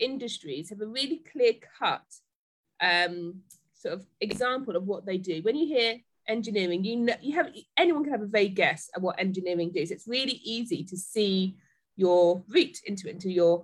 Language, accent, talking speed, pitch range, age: English, British, 185 wpm, 180-235 Hz, 20-39